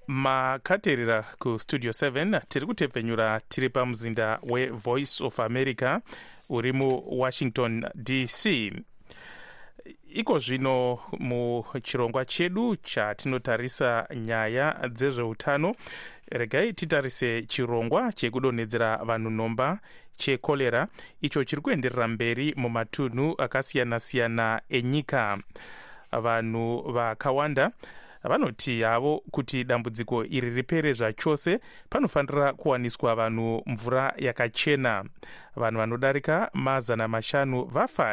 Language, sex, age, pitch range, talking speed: English, male, 30-49, 115-140 Hz, 100 wpm